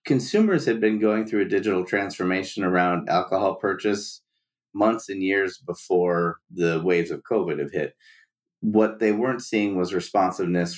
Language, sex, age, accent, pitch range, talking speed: English, male, 30-49, American, 90-110 Hz, 150 wpm